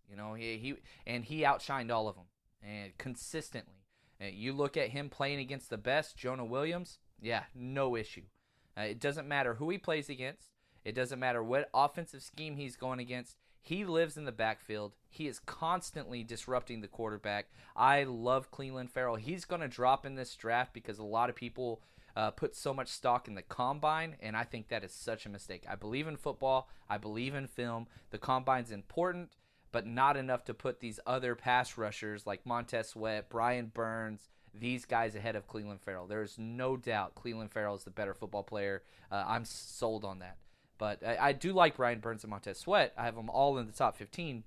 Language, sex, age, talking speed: English, male, 30-49, 200 wpm